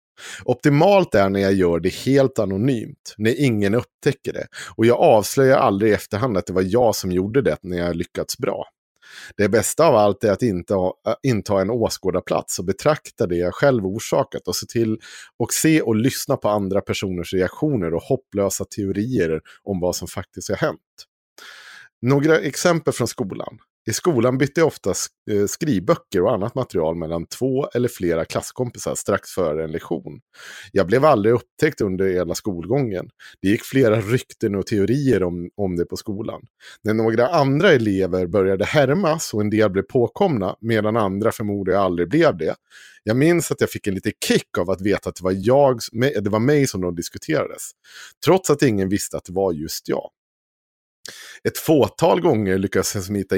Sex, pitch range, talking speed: male, 95-125 Hz, 175 wpm